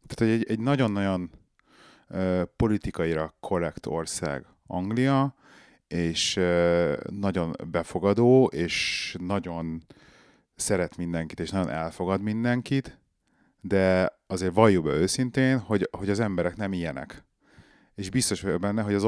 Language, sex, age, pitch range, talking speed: Hungarian, male, 30-49, 85-105 Hz, 115 wpm